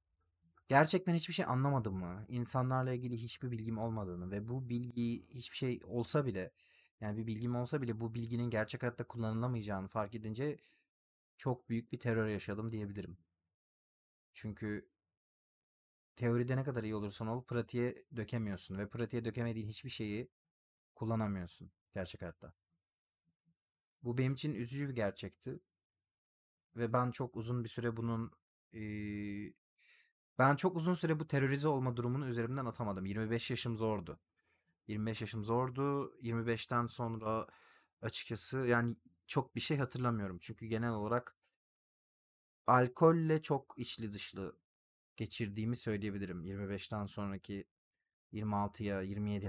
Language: Turkish